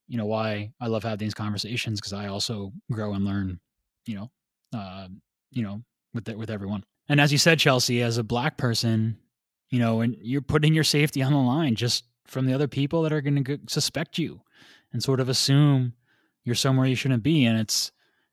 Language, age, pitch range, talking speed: English, 20-39, 110-140 Hz, 210 wpm